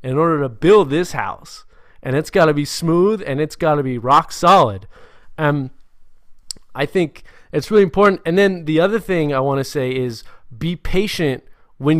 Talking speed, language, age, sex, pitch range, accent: 190 wpm, English, 20-39, male, 130-170 Hz, American